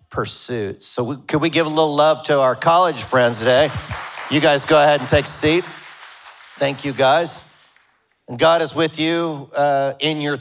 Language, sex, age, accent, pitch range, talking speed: English, male, 50-69, American, 130-165 Hz, 190 wpm